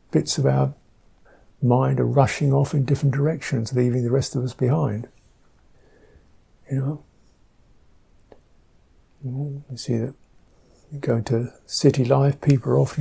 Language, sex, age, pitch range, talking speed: English, male, 60-79, 115-140 Hz, 135 wpm